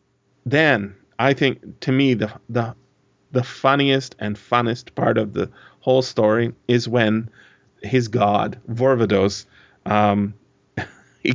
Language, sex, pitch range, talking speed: English, male, 105-130 Hz, 120 wpm